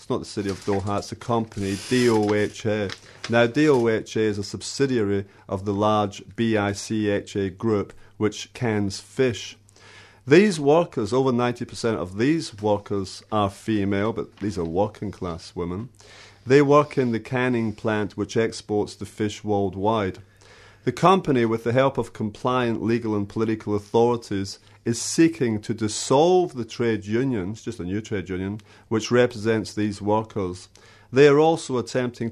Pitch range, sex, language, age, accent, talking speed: 100-120 Hz, male, English, 40-59, British, 155 wpm